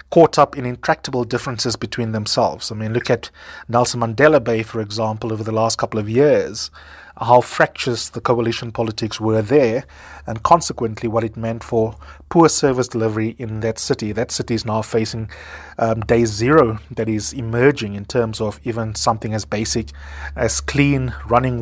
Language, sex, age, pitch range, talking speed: English, male, 30-49, 115-145 Hz, 170 wpm